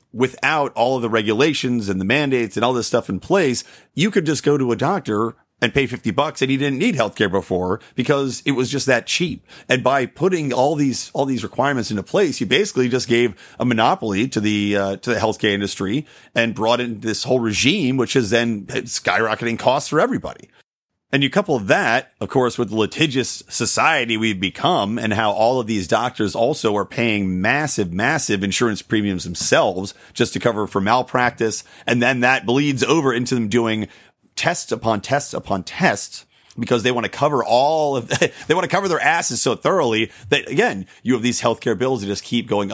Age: 40-59